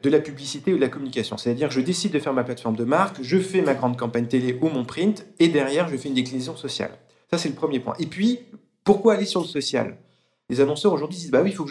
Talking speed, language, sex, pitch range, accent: 270 wpm, French, male, 120-170 Hz, French